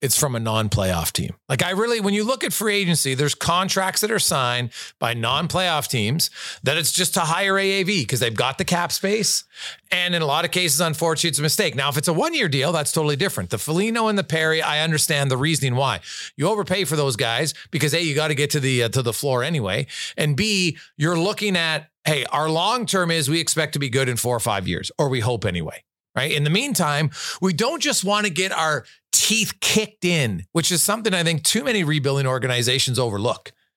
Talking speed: 225 wpm